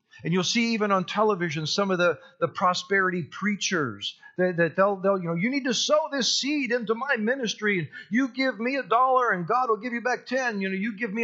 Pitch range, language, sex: 160-215 Hz, English, male